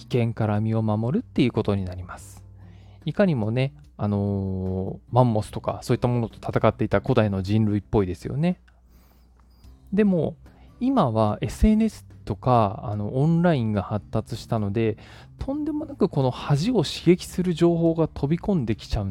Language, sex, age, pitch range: Japanese, male, 20-39, 100-150 Hz